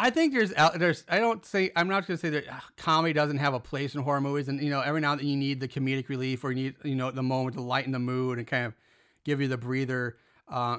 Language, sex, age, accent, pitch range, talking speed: English, male, 30-49, American, 130-160 Hz, 295 wpm